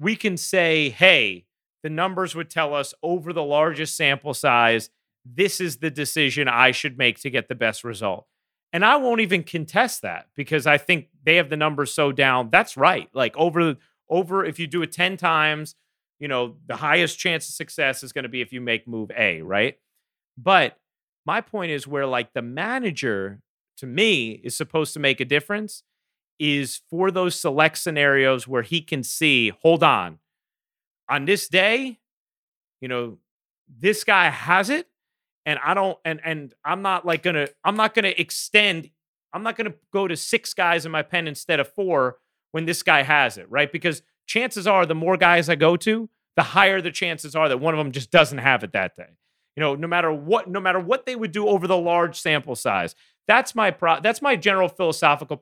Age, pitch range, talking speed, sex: 30-49, 145-185 Hz, 200 wpm, male